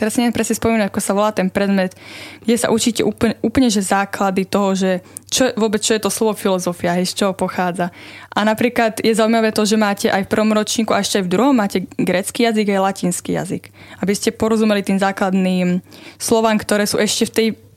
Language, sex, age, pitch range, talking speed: Slovak, female, 20-39, 190-225 Hz, 210 wpm